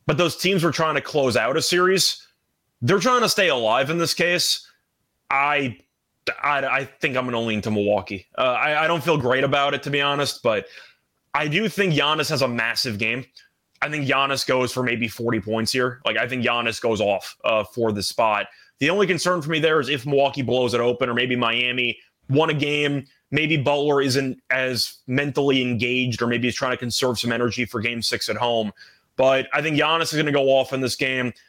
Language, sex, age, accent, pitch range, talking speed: English, male, 20-39, American, 120-160 Hz, 220 wpm